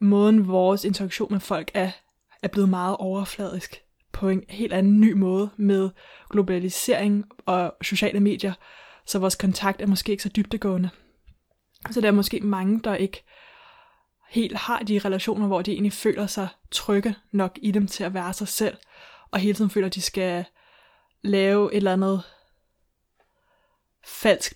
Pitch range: 190-205 Hz